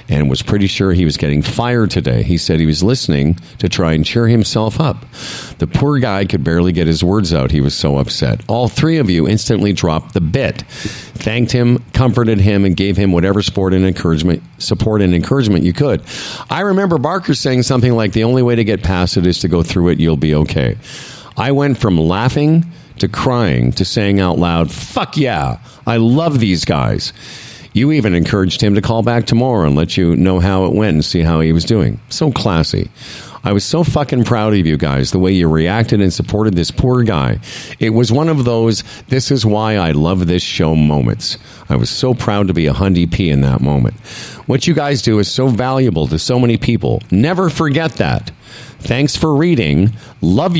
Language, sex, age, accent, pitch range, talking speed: English, male, 50-69, American, 90-125 Hz, 210 wpm